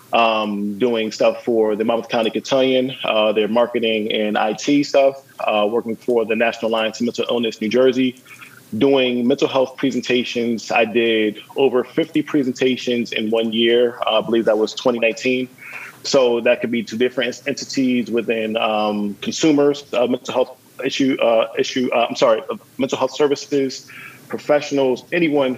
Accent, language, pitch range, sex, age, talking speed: American, English, 110-130 Hz, male, 20-39, 160 wpm